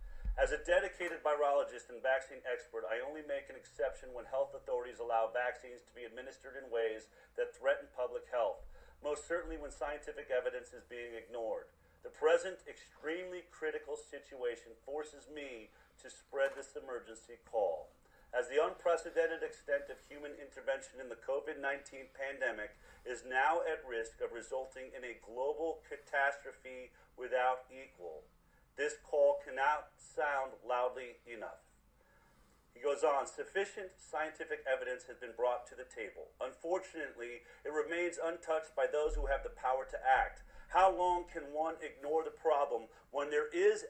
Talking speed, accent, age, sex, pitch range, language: 150 wpm, American, 40-59, male, 135-190 Hz, English